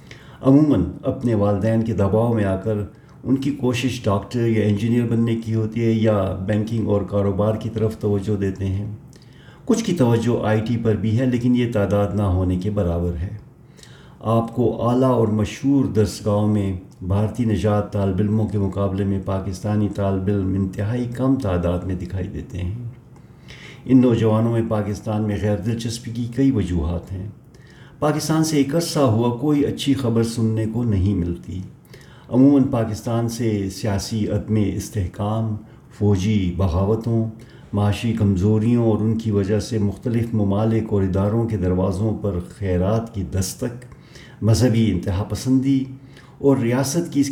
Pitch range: 100-125 Hz